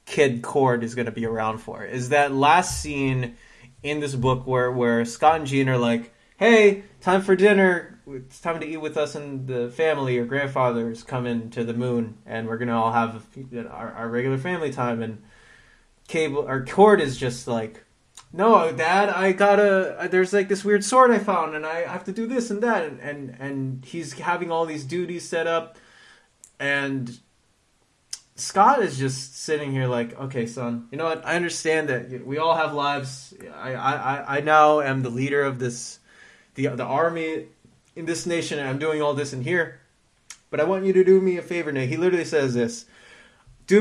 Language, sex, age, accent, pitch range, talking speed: English, male, 20-39, American, 125-165 Hz, 195 wpm